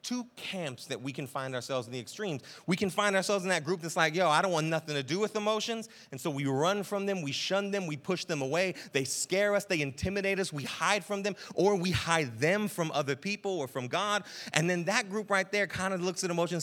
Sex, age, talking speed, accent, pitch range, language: male, 30-49, 260 wpm, American, 145-200 Hz, English